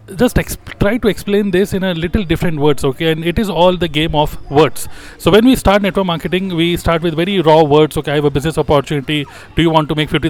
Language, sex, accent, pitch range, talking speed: Hindi, male, native, 150-190 Hz, 255 wpm